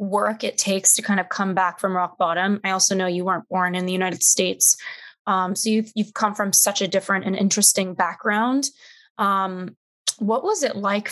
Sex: female